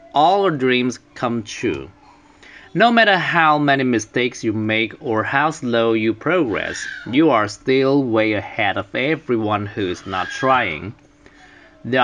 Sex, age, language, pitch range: male, 30-49, Chinese, 105-150 Hz